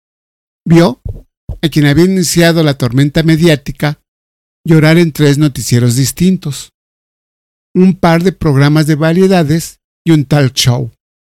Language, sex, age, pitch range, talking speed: Spanish, male, 50-69, 135-170 Hz, 120 wpm